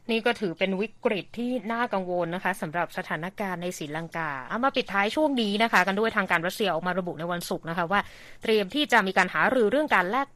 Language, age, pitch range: Thai, 20-39, 170-220 Hz